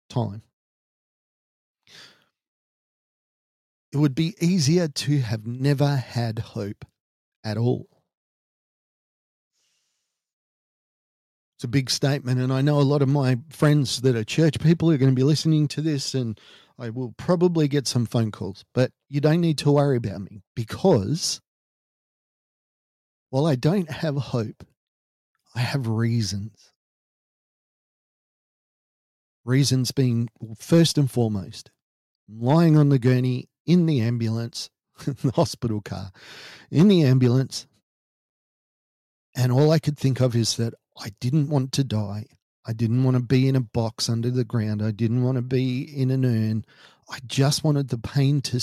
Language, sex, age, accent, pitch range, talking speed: English, male, 40-59, Australian, 115-145 Hz, 145 wpm